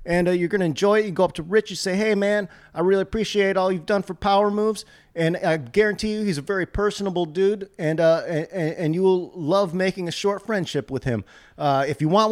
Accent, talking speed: American, 250 wpm